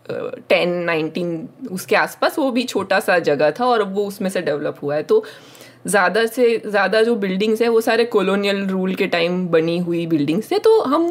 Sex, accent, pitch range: female, native, 180-250 Hz